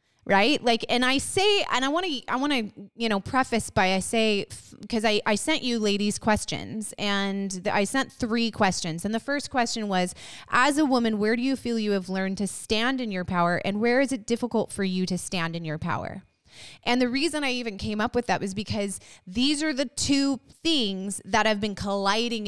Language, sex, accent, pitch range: English, female, American, 200-255 Hz